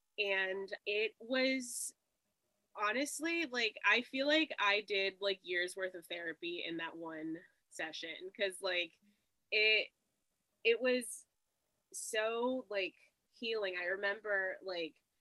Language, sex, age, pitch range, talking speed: English, female, 20-39, 175-205 Hz, 120 wpm